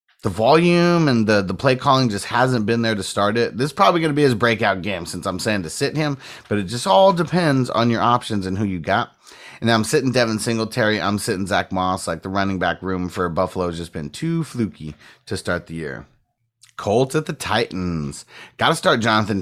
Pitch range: 95-130 Hz